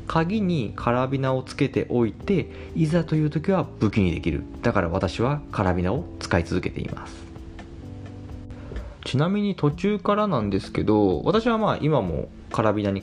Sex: male